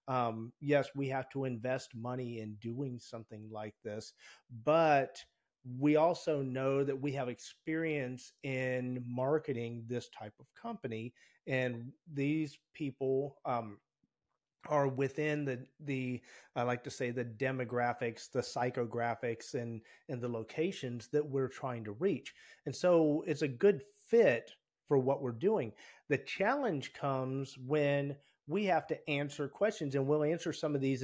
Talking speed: 145 wpm